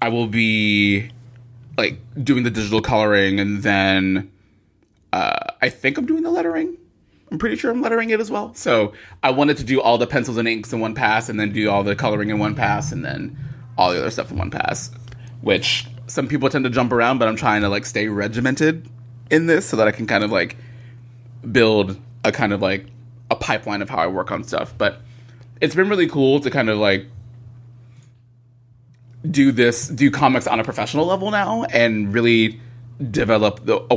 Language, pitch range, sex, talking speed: English, 105-125 Hz, male, 205 wpm